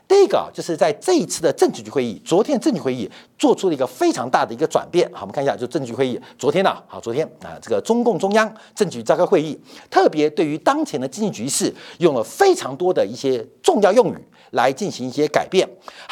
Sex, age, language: male, 50-69, Chinese